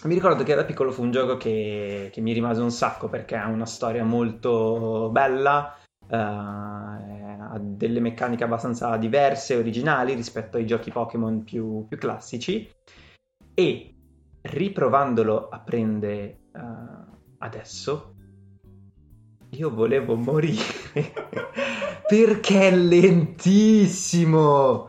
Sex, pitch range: male, 110-160 Hz